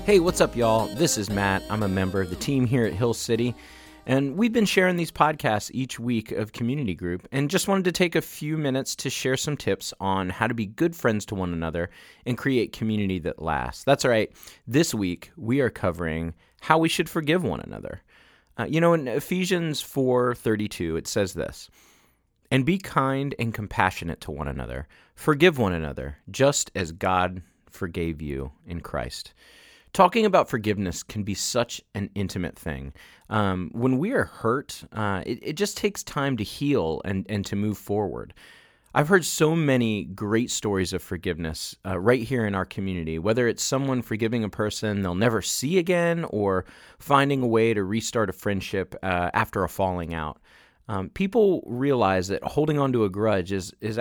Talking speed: 185 wpm